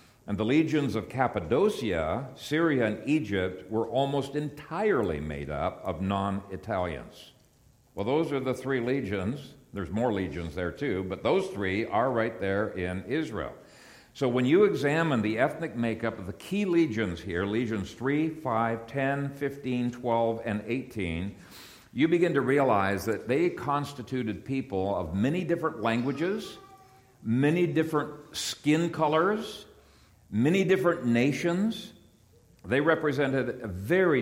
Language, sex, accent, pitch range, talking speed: English, male, American, 105-145 Hz, 135 wpm